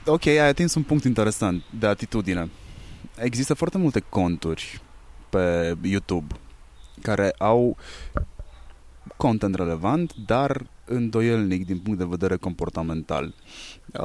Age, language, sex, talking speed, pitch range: 20-39, Romanian, male, 110 wpm, 95-130 Hz